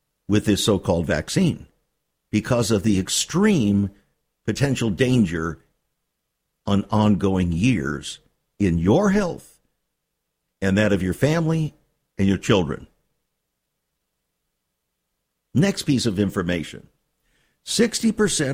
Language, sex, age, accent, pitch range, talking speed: English, male, 50-69, American, 100-160 Hz, 95 wpm